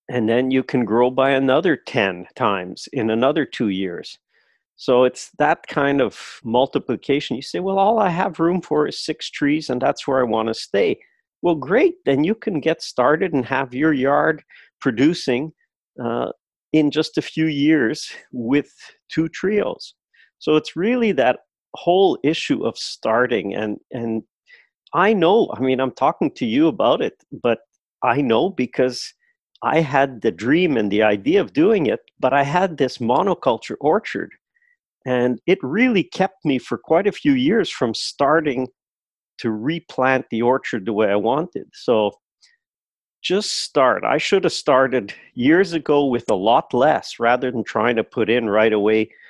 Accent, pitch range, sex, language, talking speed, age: American, 120-180 Hz, male, English, 170 wpm, 50-69